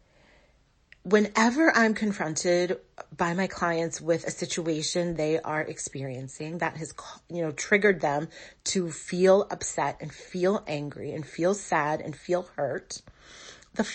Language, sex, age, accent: English, female, 30-49, American